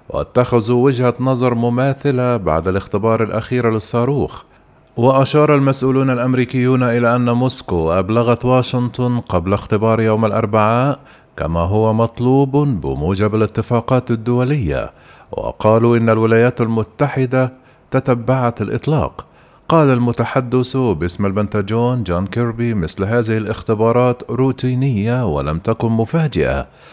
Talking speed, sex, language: 100 wpm, male, Arabic